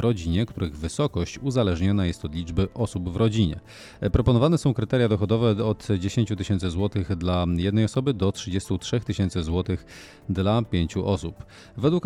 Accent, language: native, Polish